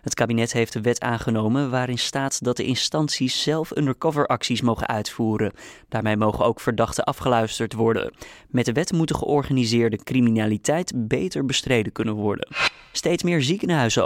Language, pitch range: Dutch, 110-135 Hz